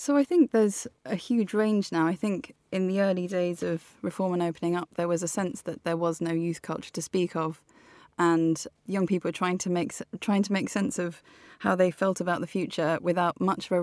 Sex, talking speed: female, 225 wpm